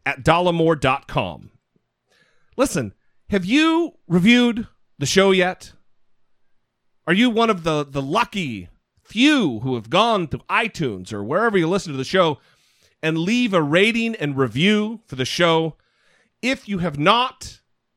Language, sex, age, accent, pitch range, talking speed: English, male, 40-59, American, 145-200 Hz, 140 wpm